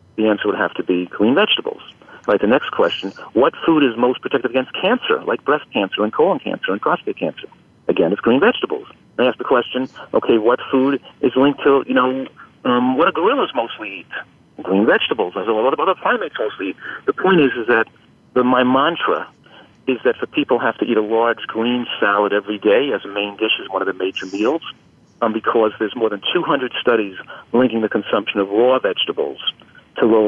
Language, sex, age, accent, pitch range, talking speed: English, male, 50-69, American, 105-130 Hz, 205 wpm